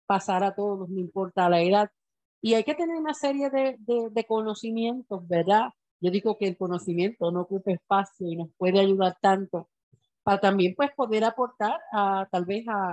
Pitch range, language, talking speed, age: 185-230 Hz, Spanish, 185 wpm, 50-69